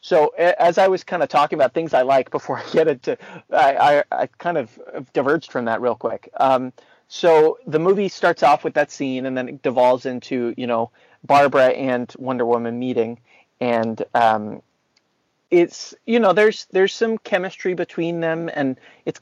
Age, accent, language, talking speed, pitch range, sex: 30-49, American, English, 185 wpm, 130-200 Hz, male